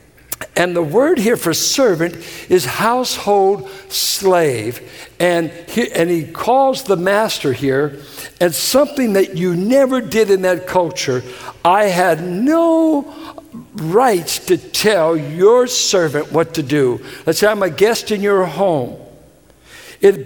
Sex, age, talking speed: male, 60-79, 135 wpm